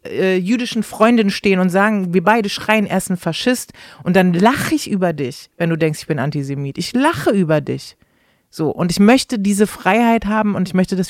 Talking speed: 210 wpm